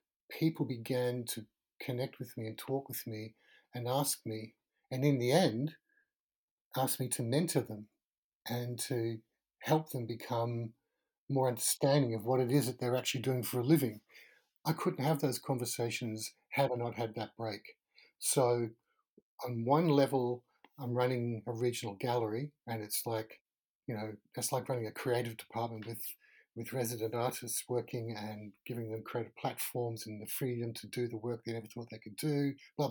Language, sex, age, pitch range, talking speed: English, male, 60-79, 115-140 Hz, 175 wpm